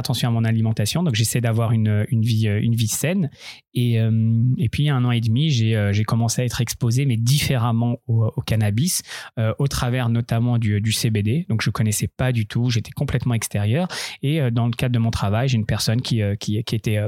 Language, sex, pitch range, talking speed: French, male, 110-130 Hz, 210 wpm